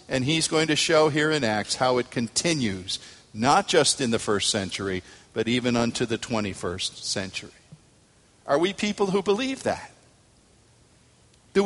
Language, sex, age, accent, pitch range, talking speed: English, male, 50-69, American, 115-165 Hz, 155 wpm